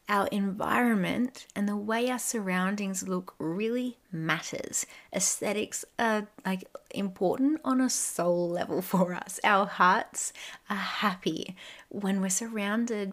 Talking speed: 125 wpm